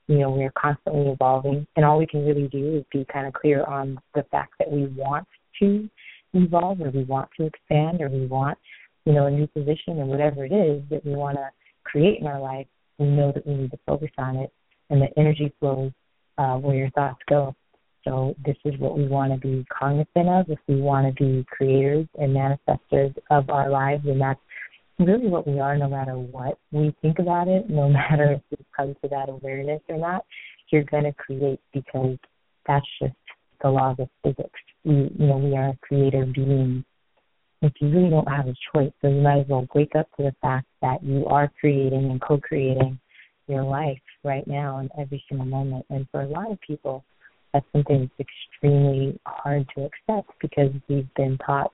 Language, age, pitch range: English, 30-49, 135-150 Hz